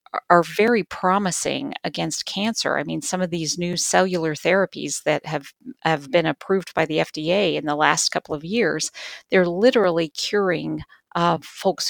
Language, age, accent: English, 50-69, American